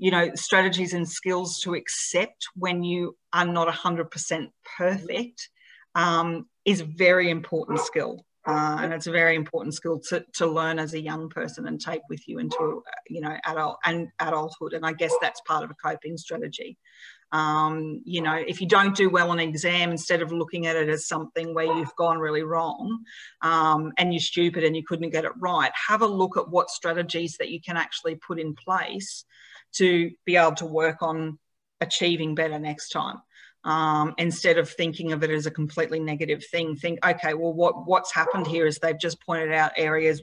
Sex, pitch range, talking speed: female, 160-175 Hz, 195 wpm